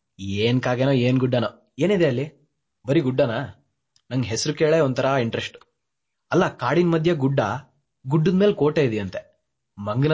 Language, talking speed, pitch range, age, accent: Kannada, 125 wpm, 120-155 Hz, 20-39, native